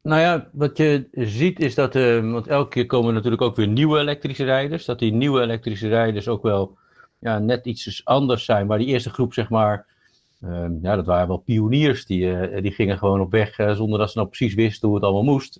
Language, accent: Dutch, Dutch